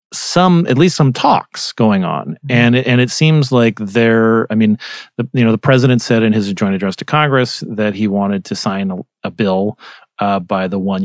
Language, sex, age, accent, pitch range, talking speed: English, male, 30-49, American, 105-125 Hz, 205 wpm